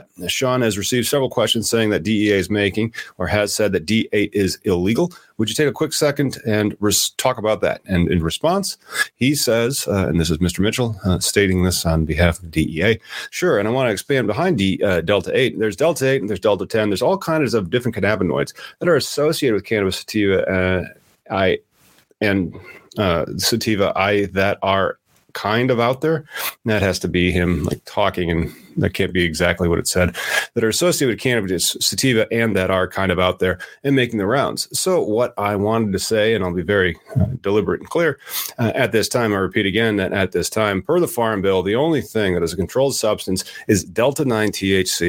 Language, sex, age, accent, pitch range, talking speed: English, male, 40-59, American, 95-120 Hz, 210 wpm